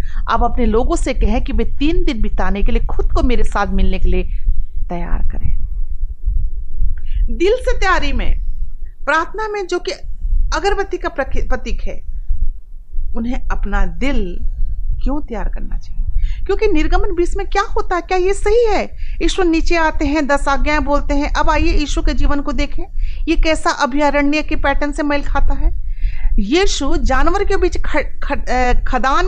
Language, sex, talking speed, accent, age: Hindi, female, 165 wpm, native, 40-59